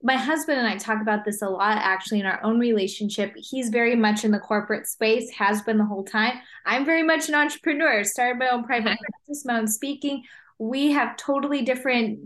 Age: 20-39